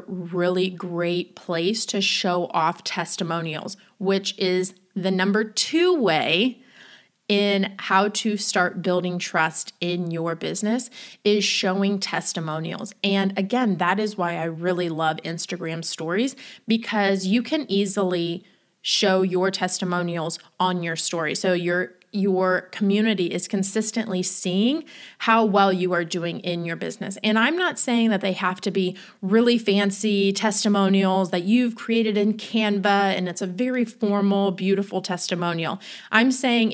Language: English